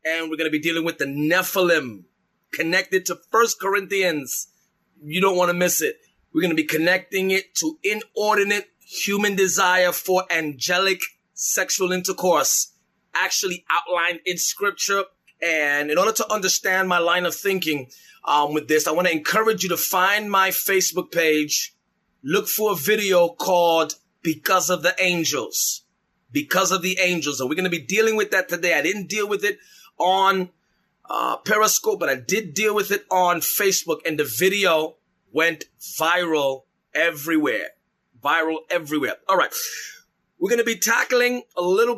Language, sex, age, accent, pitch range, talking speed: English, male, 30-49, American, 170-205 Hz, 160 wpm